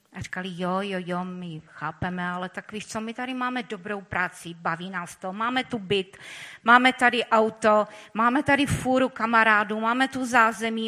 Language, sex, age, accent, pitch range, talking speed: Czech, female, 30-49, native, 185-225 Hz, 175 wpm